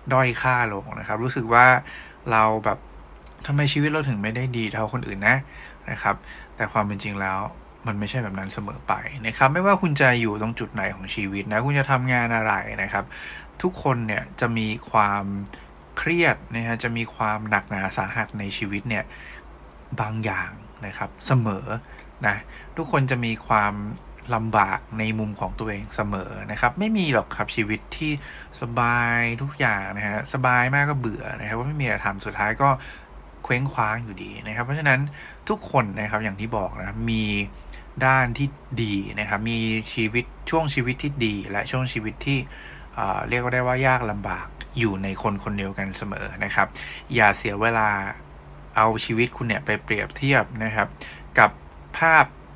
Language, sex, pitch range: English, male, 105-125 Hz